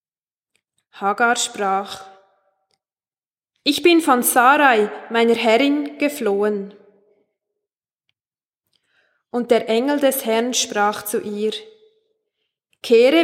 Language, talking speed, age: German, 80 wpm, 20-39